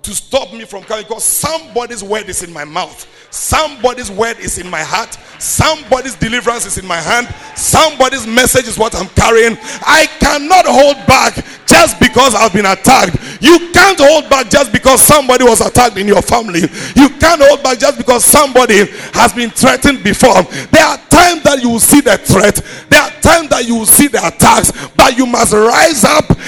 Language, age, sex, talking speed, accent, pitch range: English, 50-69, male, 195 wpm, Nigerian, 215-290 Hz